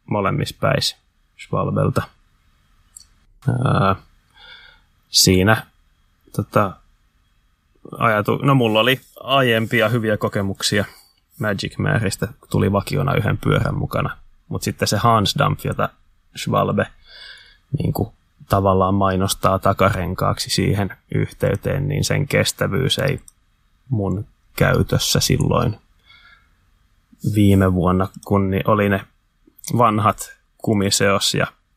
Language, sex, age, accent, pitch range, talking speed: Finnish, male, 20-39, native, 95-115 Hz, 90 wpm